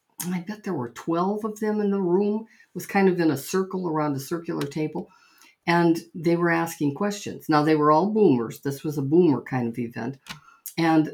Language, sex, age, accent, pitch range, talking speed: English, female, 50-69, American, 150-200 Hz, 215 wpm